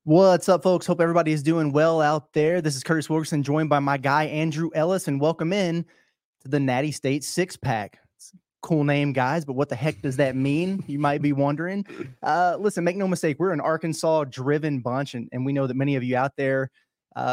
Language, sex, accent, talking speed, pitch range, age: English, male, American, 220 wpm, 140-170 Hz, 20-39